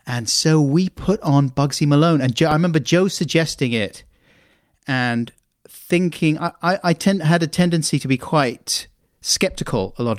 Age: 30-49